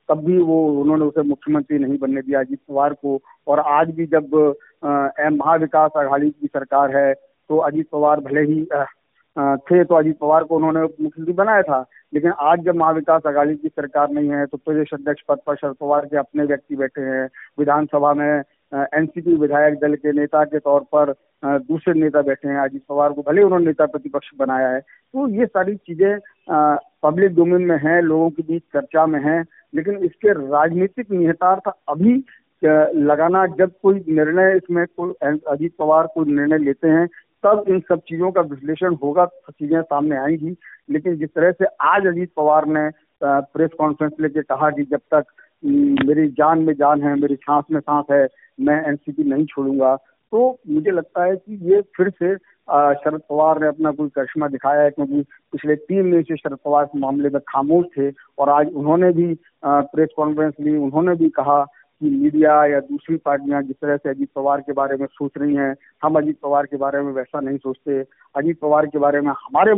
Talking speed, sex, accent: 185 wpm, male, native